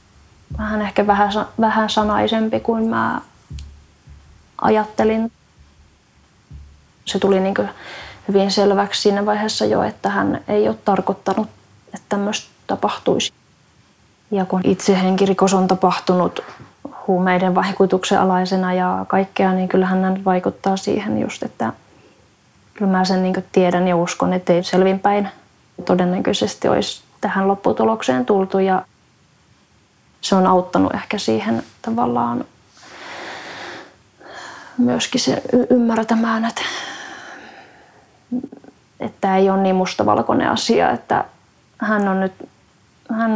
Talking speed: 110 wpm